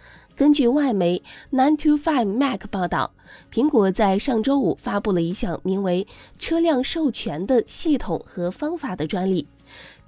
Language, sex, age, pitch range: Chinese, female, 20-39, 190-280 Hz